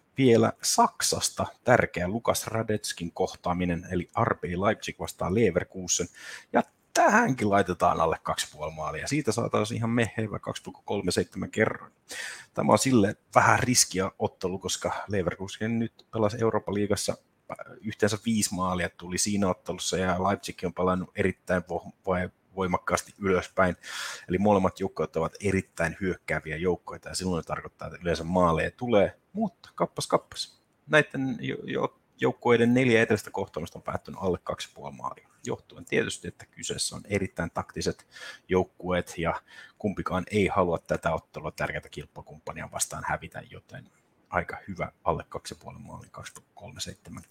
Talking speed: 130 wpm